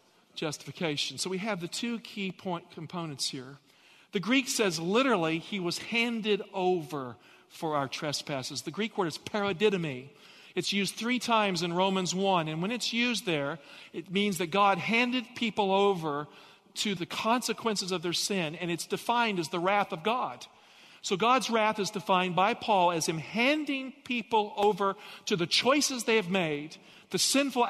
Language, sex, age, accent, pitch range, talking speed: English, male, 50-69, American, 175-235 Hz, 170 wpm